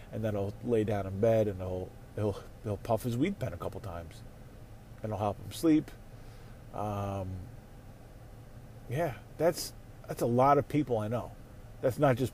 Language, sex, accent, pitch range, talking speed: English, male, American, 110-140 Hz, 175 wpm